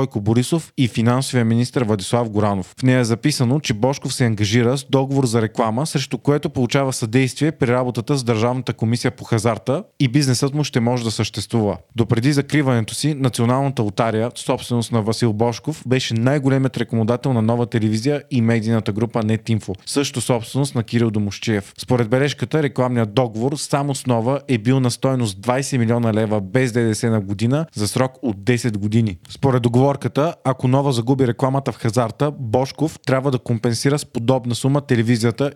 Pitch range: 115-135 Hz